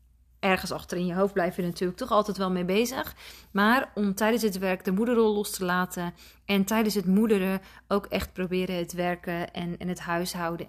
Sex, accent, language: female, Dutch, Dutch